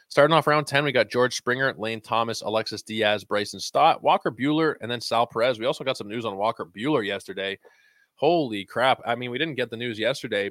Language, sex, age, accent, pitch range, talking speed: English, male, 20-39, American, 105-145 Hz, 225 wpm